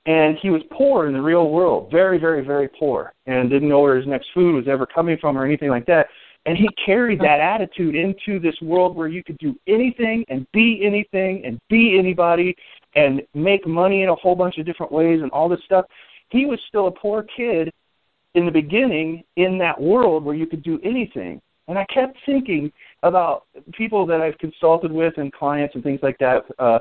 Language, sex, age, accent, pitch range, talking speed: English, male, 50-69, American, 150-195 Hz, 210 wpm